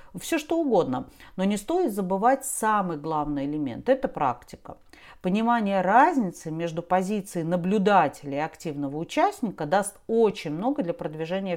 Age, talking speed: 40-59, 130 wpm